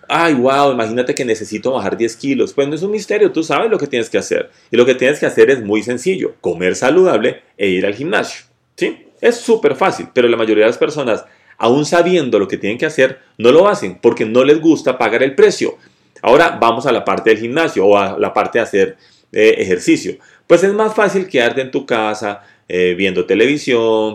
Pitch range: 105-170 Hz